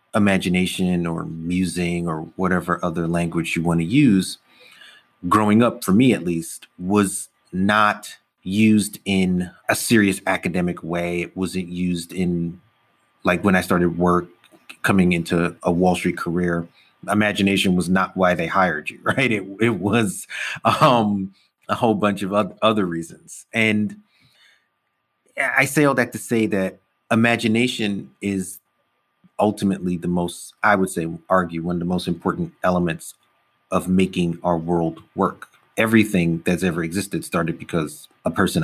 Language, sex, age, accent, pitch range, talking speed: English, male, 30-49, American, 90-105 Hz, 145 wpm